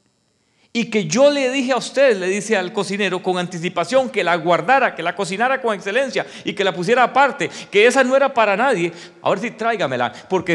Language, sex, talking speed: English, male, 210 wpm